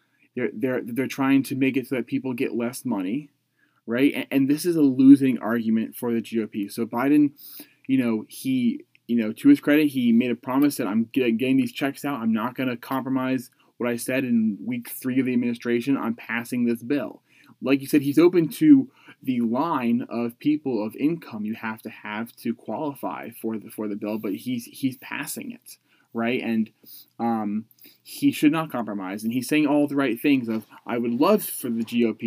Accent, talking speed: American, 205 wpm